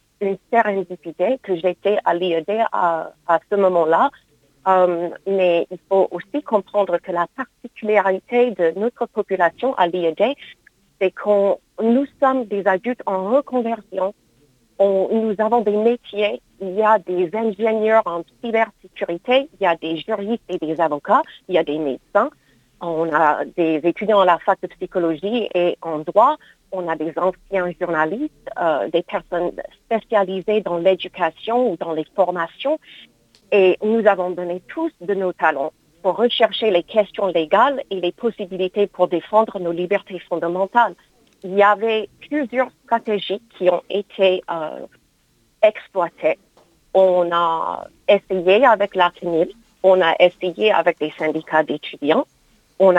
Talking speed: 145 wpm